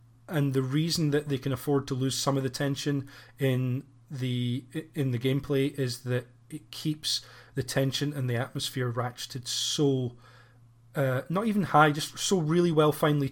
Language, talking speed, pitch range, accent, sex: English, 170 wpm, 125-140 Hz, British, male